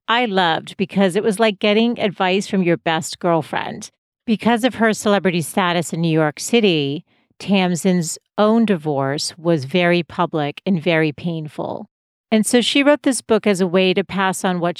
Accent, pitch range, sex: American, 170-210 Hz, female